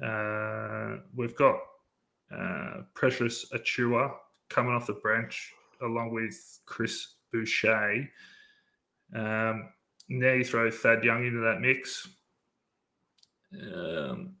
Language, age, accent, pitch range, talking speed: English, 20-39, Australian, 110-130 Hz, 100 wpm